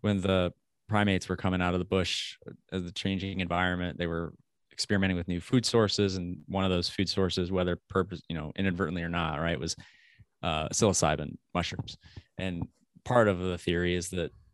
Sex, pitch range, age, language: male, 85-100 Hz, 20-39, English